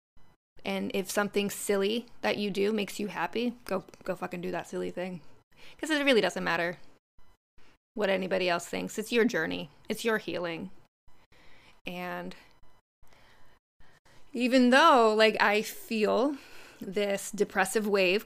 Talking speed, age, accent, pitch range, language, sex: 135 wpm, 20-39, American, 200-255 Hz, English, female